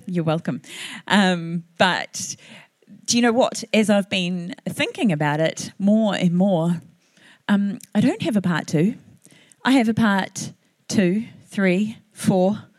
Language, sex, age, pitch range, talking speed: English, female, 30-49, 185-250 Hz, 145 wpm